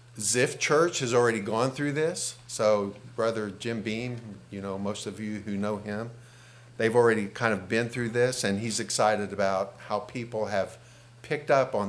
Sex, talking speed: male, 180 wpm